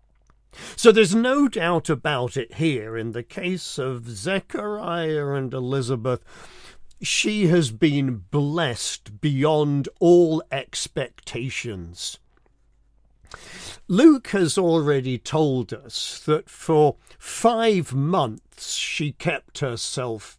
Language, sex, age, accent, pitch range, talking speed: English, male, 50-69, British, 125-170 Hz, 95 wpm